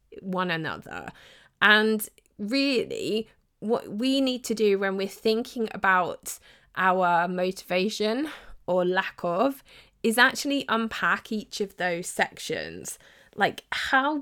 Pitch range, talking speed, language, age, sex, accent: 185-235 Hz, 115 wpm, English, 20-39, female, British